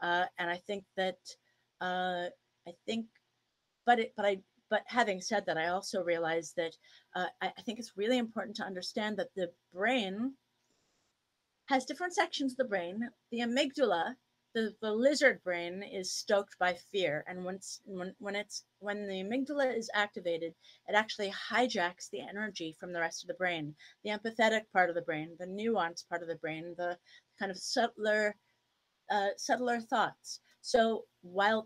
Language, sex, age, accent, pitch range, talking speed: English, female, 30-49, American, 180-240 Hz, 170 wpm